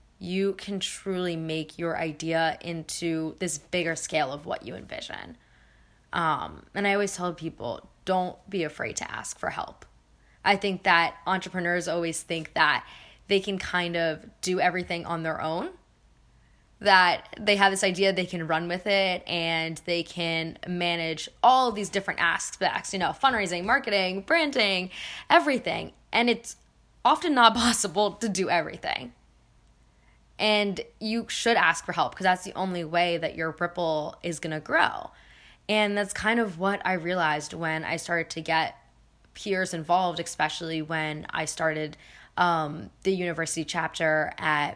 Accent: American